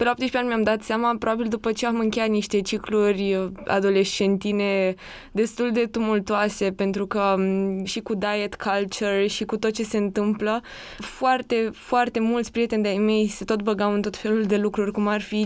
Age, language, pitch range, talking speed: 20-39, Romanian, 200-230 Hz, 180 wpm